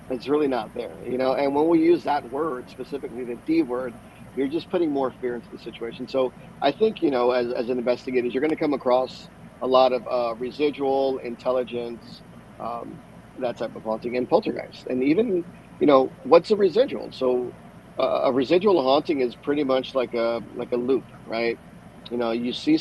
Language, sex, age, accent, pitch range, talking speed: English, male, 40-59, American, 120-135 Hz, 200 wpm